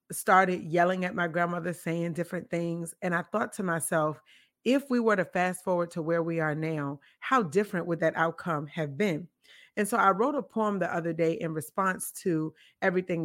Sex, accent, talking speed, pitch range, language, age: female, American, 200 wpm, 160-200 Hz, English, 30-49